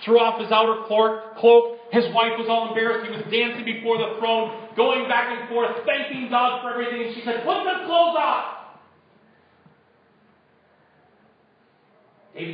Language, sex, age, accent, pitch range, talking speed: English, male, 40-59, American, 210-280 Hz, 155 wpm